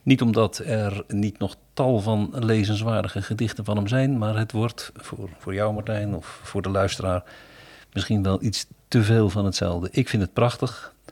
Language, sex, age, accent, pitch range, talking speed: Dutch, male, 50-69, Dutch, 100-130 Hz, 185 wpm